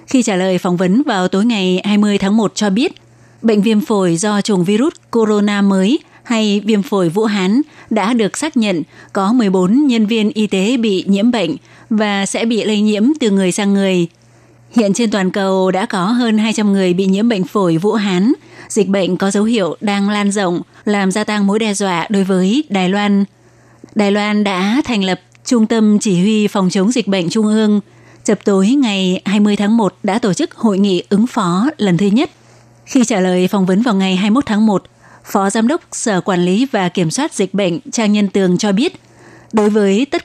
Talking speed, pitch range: 210 wpm, 190-225 Hz